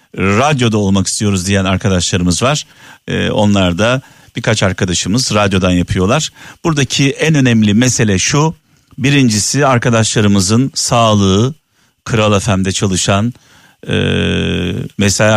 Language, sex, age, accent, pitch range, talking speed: Turkish, male, 50-69, native, 100-140 Hz, 95 wpm